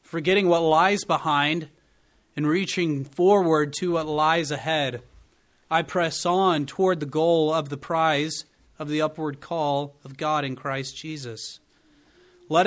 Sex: male